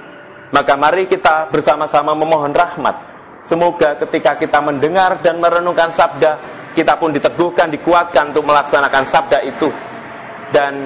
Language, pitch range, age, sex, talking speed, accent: Indonesian, 130-160 Hz, 30-49, male, 120 wpm, native